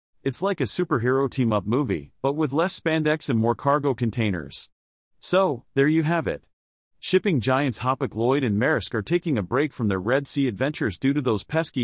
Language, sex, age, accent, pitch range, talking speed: English, male, 40-59, American, 110-150 Hz, 195 wpm